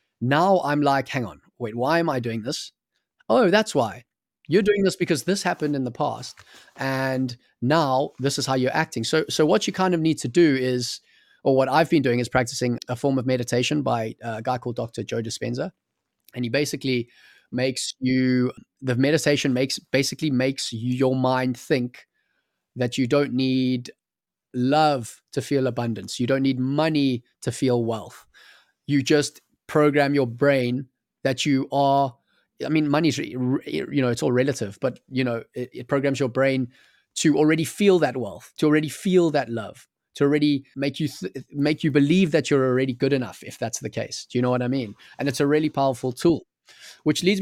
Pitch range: 125-150 Hz